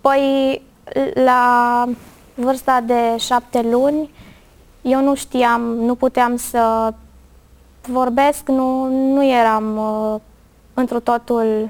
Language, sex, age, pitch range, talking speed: Romanian, female, 20-39, 235-270 Hz, 95 wpm